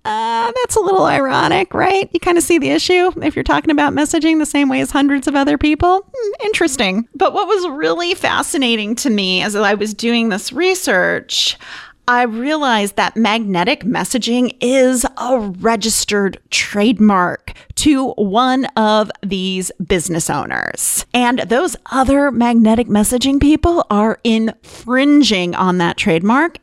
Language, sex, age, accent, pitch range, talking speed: English, female, 30-49, American, 200-305 Hz, 145 wpm